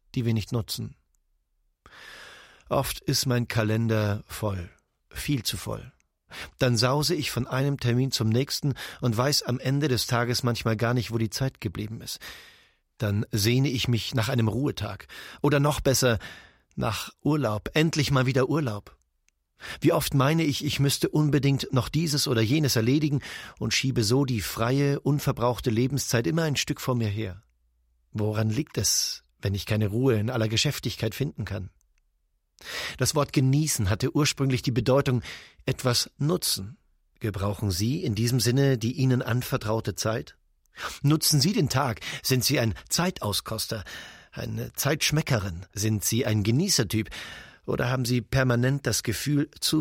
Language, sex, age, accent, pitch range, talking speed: German, male, 40-59, German, 110-140 Hz, 150 wpm